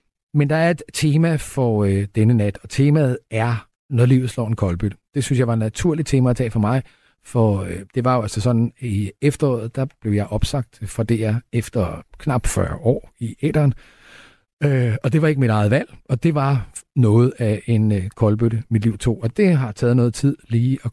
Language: Danish